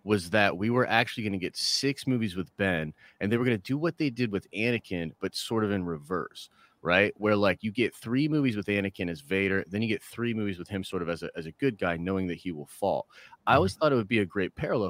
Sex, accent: male, American